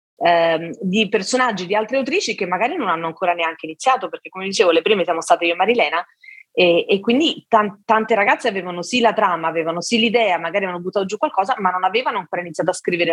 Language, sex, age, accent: Italian, female, 30-49, native